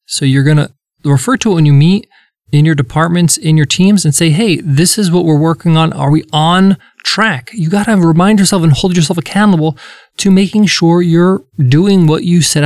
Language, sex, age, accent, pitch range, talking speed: English, male, 20-39, American, 140-190 Hz, 220 wpm